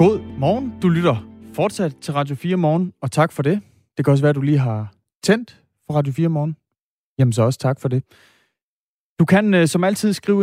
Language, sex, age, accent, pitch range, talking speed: Danish, male, 30-49, native, 120-165 Hz, 215 wpm